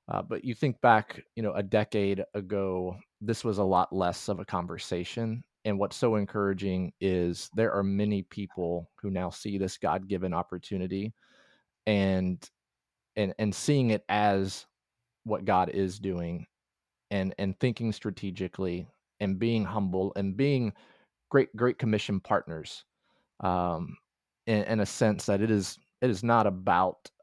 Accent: American